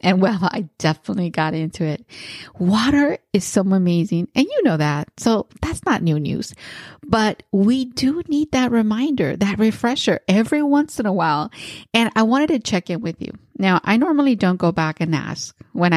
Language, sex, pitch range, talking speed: English, female, 160-215 Hz, 190 wpm